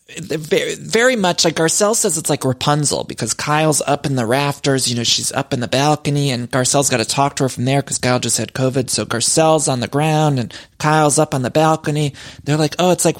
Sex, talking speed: male, 235 wpm